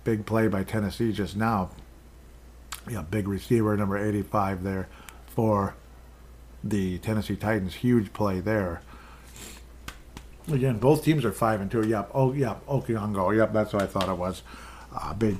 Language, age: English, 50-69